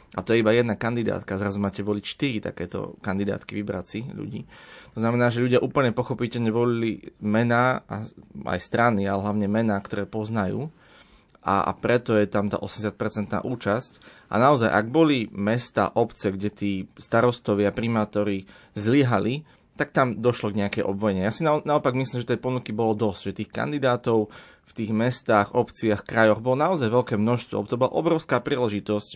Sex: male